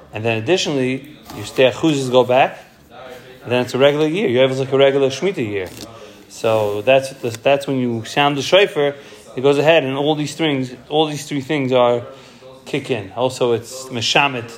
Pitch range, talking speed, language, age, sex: 120-150 Hz, 190 wpm, English, 30-49, male